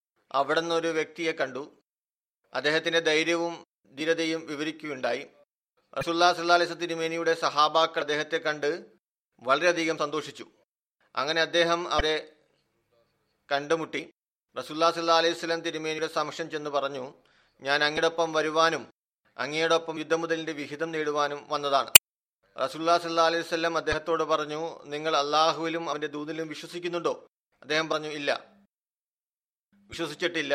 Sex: male